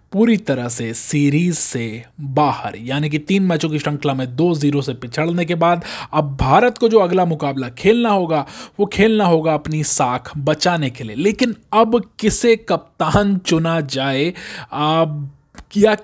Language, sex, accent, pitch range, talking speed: Hindi, male, native, 150-190 Hz, 155 wpm